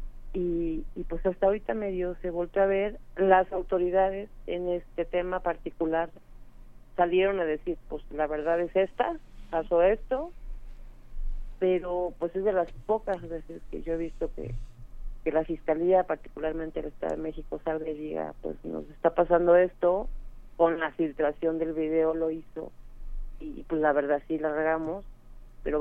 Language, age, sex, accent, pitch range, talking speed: Spanish, 40-59, female, Mexican, 155-185 Hz, 160 wpm